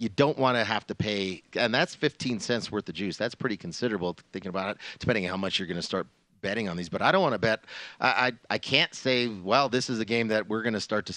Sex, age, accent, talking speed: male, 30-49, American, 285 wpm